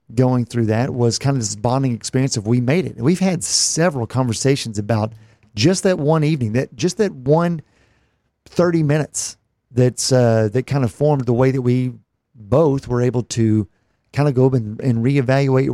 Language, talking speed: English, 190 wpm